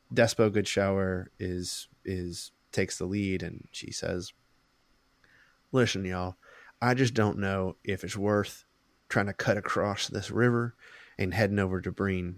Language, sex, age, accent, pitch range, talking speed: English, male, 20-39, American, 100-125 Hz, 145 wpm